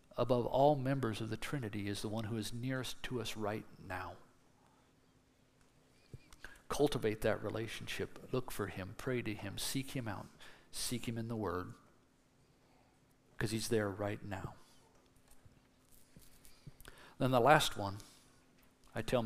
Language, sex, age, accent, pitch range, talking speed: English, male, 50-69, American, 110-140 Hz, 135 wpm